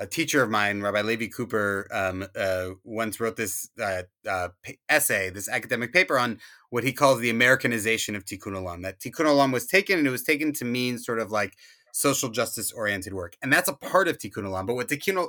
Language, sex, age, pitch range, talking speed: English, male, 30-49, 115-165 Hz, 215 wpm